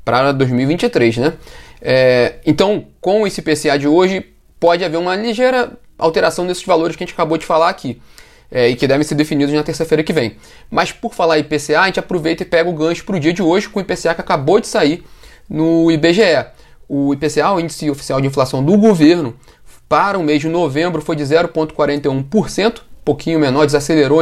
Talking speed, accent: 200 wpm, Brazilian